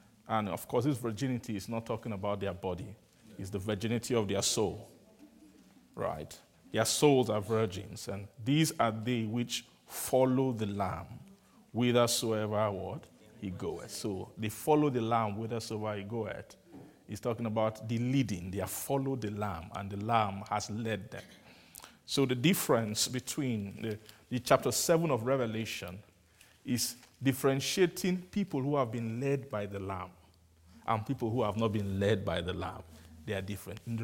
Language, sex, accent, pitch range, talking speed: English, male, Nigerian, 100-125 Hz, 160 wpm